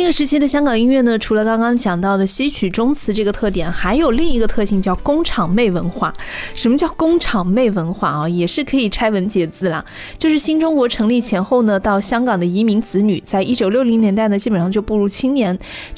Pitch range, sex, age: 190-255 Hz, female, 20-39